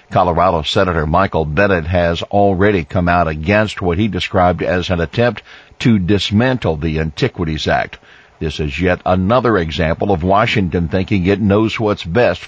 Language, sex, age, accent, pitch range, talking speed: English, male, 50-69, American, 90-115 Hz, 155 wpm